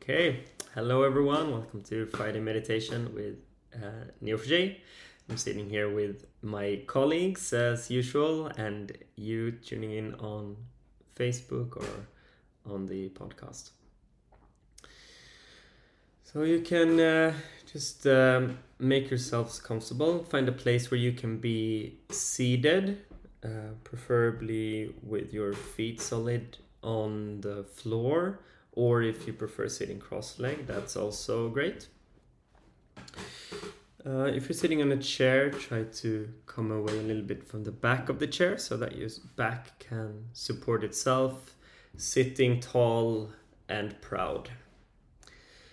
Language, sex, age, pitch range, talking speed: English, male, 20-39, 110-130 Hz, 125 wpm